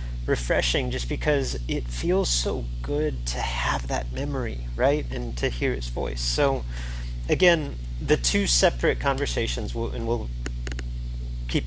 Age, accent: 30-49, American